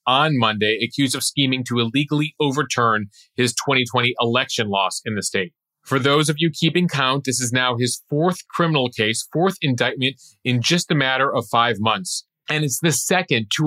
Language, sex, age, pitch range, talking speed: English, male, 30-49, 120-150 Hz, 185 wpm